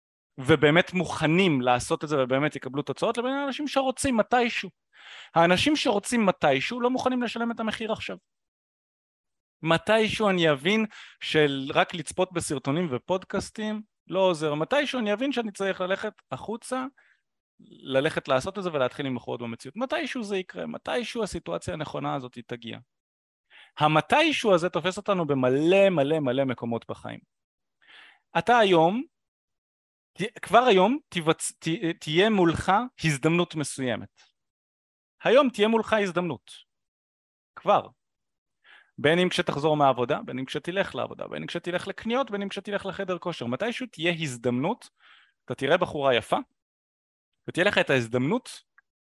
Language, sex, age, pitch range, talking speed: Hebrew, male, 30-49, 135-210 Hz, 130 wpm